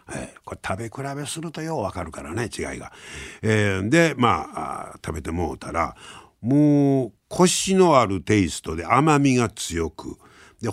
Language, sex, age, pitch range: Japanese, male, 60-79, 95-145 Hz